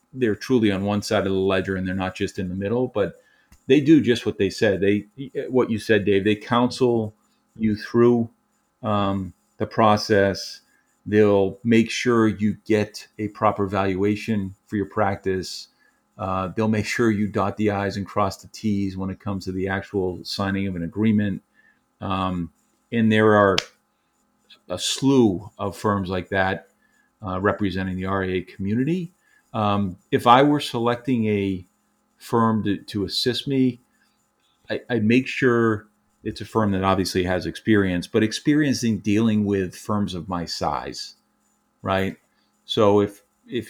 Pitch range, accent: 95-110 Hz, American